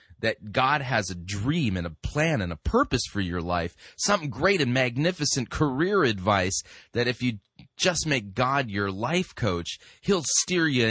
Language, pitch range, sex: English, 95-120 Hz, male